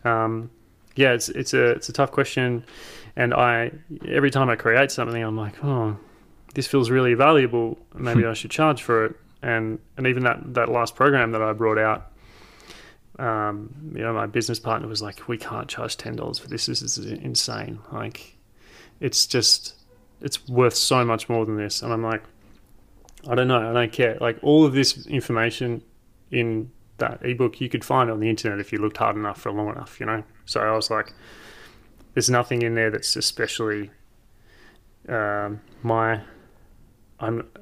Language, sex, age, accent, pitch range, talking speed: English, male, 20-39, Australian, 110-125 Hz, 185 wpm